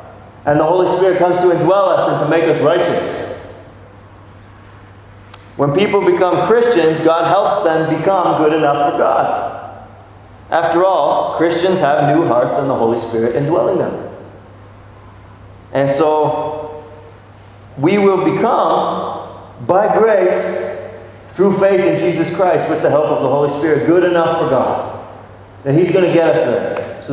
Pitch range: 110-165 Hz